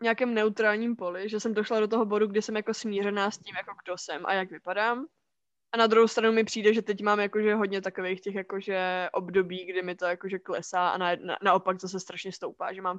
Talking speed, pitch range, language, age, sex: 220 wpm, 190-220 Hz, Czech, 20-39, female